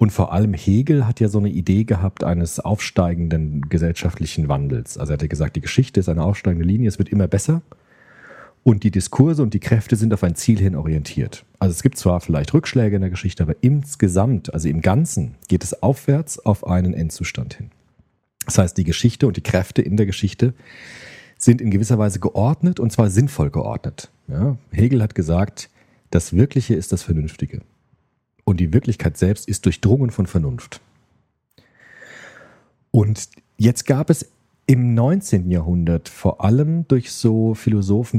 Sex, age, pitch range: male, 40-59, 90-120 Hz